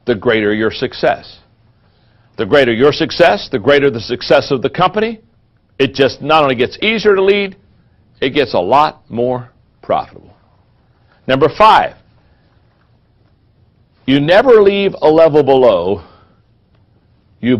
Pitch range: 120-180 Hz